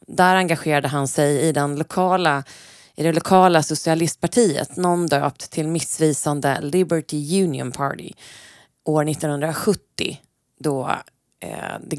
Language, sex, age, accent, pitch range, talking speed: Swedish, female, 30-49, native, 145-185 Hz, 95 wpm